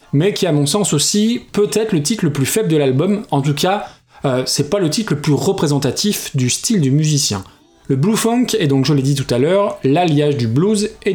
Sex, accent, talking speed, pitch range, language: male, French, 235 wpm, 145-195 Hz, French